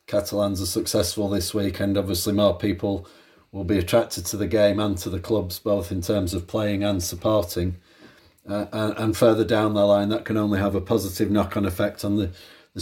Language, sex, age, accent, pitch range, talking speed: English, male, 40-59, British, 95-110 Hz, 200 wpm